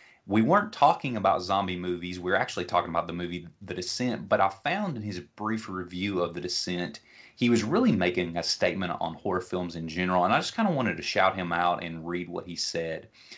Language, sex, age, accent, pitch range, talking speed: English, male, 30-49, American, 90-105 Hz, 230 wpm